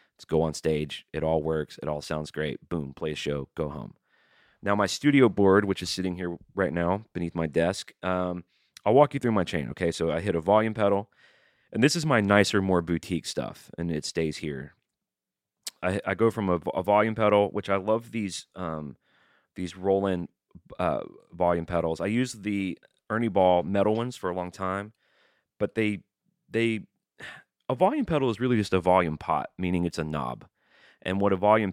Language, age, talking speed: English, 30-49, 200 wpm